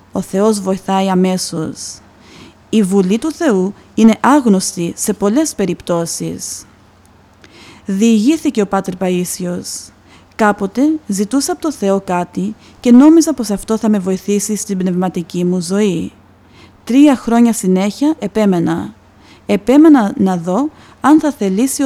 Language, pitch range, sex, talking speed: Greek, 180-230 Hz, female, 120 wpm